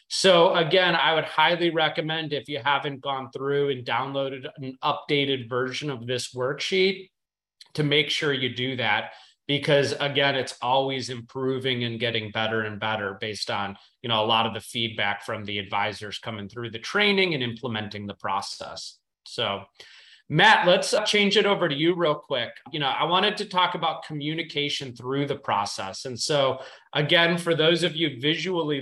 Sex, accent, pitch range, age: male, American, 125-160 Hz, 30-49